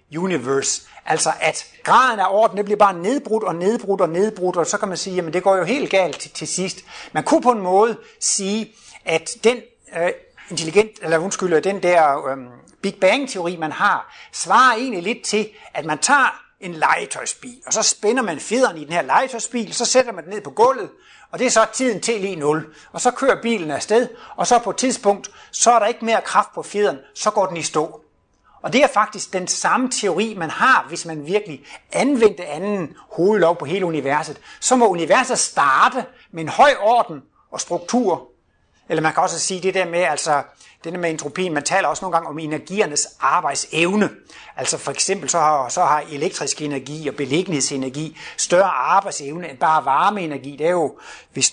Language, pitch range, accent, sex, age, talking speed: Danish, 155-215 Hz, native, male, 60-79, 200 wpm